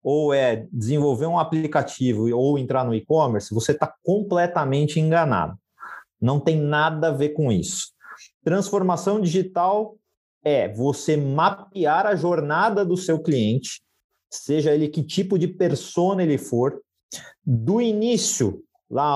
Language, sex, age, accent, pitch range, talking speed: Portuguese, male, 40-59, Brazilian, 150-190 Hz, 130 wpm